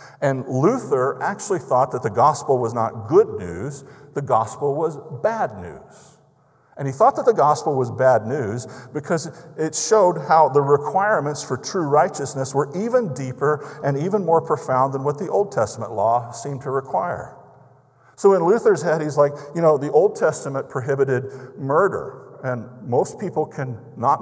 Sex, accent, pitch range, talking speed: male, American, 125-155 Hz, 170 wpm